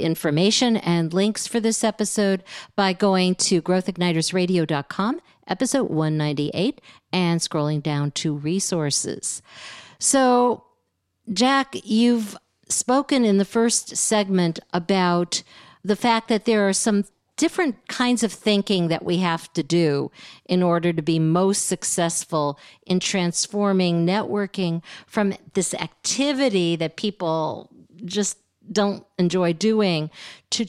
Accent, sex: American, female